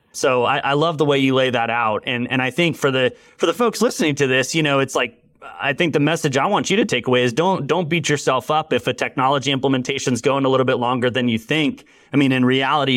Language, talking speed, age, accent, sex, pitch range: English, 275 wpm, 30-49, American, male, 125-155 Hz